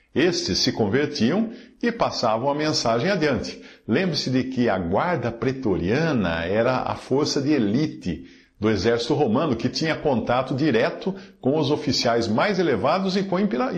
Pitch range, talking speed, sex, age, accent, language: 115-155 Hz, 150 wpm, male, 50-69, Brazilian, Portuguese